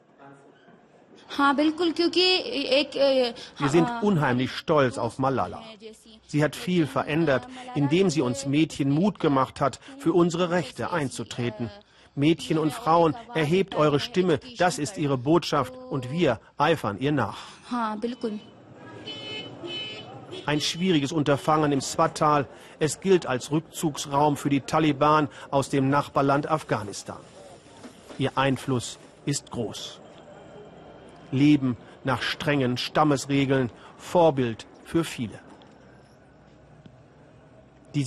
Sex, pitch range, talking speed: male, 135-165 Hz, 100 wpm